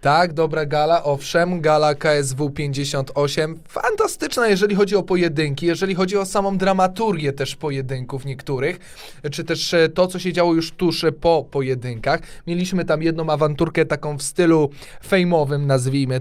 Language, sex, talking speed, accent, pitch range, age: Polish, male, 145 wpm, native, 140-175 Hz, 20-39